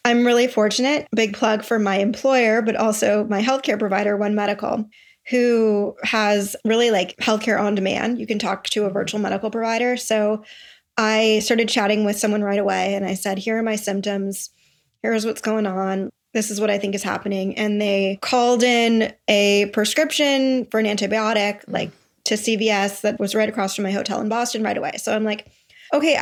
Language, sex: English, female